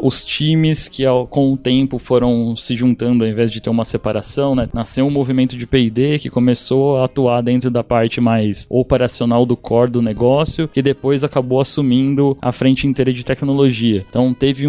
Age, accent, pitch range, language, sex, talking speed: 20-39, Brazilian, 125-145 Hz, Portuguese, male, 190 wpm